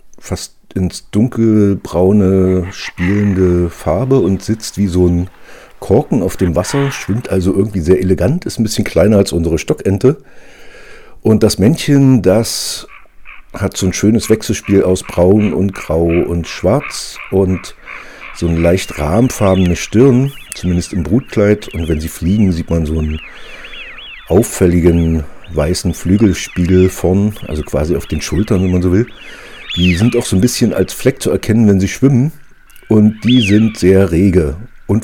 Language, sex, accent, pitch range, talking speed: German, male, German, 90-115 Hz, 155 wpm